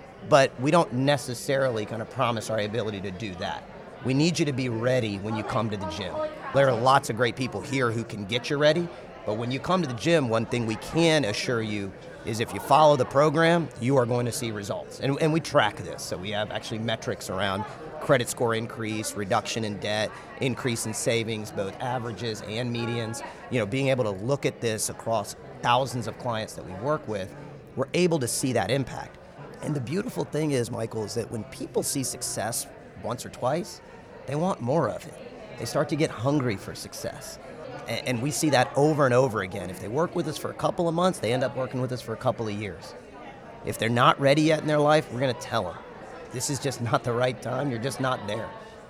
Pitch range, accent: 115-145 Hz, American